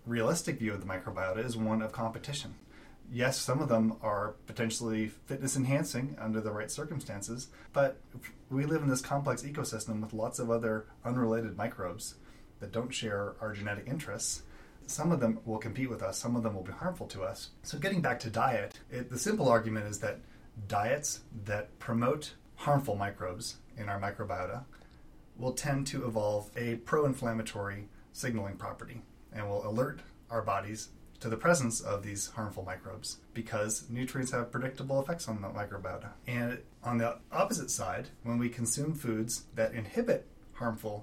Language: English